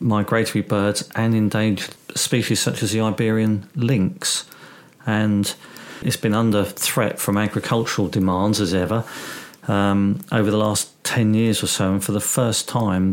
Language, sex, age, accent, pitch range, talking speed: English, male, 40-59, British, 100-125 Hz, 150 wpm